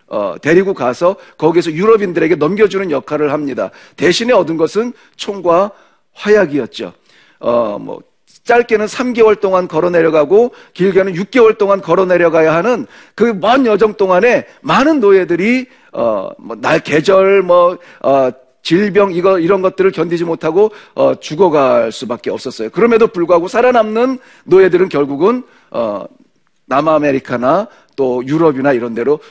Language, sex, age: Korean, male, 40-59